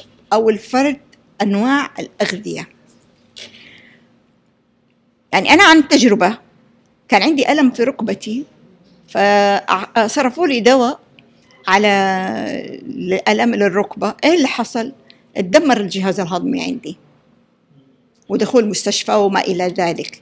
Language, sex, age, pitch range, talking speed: Arabic, female, 50-69, 200-260 Hz, 90 wpm